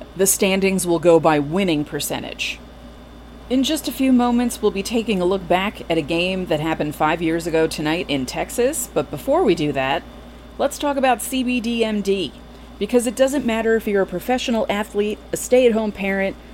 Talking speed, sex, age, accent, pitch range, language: 180 wpm, female, 30-49, American, 175-235 Hz, English